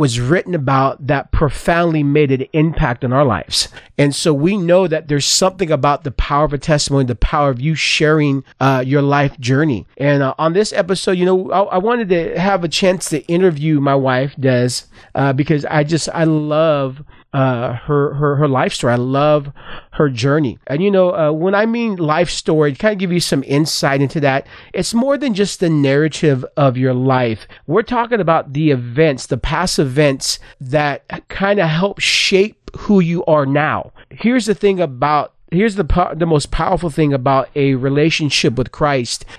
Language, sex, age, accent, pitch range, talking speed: English, male, 40-59, American, 140-175 Hz, 190 wpm